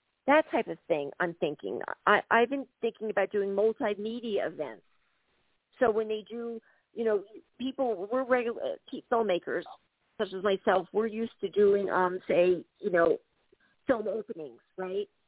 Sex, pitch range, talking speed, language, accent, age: female, 205-275 Hz, 150 wpm, English, American, 50-69